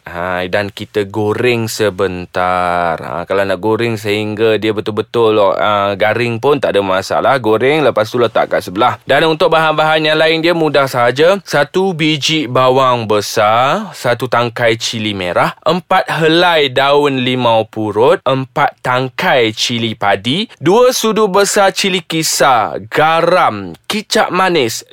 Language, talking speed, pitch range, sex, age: Malay, 135 wpm, 115-150 Hz, male, 20-39